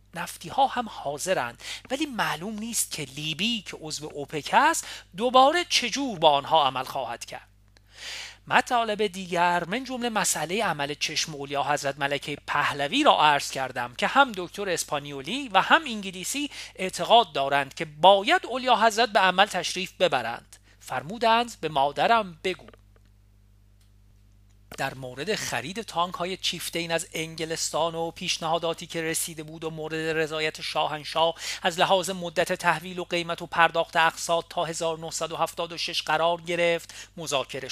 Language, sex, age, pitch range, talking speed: Persian, male, 40-59, 145-210 Hz, 135 wpm